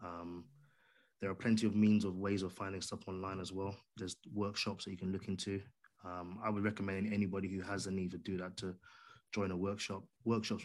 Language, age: English, 20-39